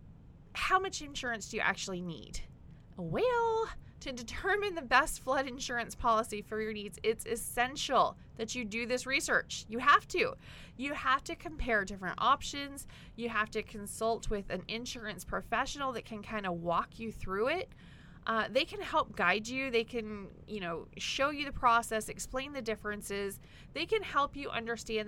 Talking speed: 170 wpm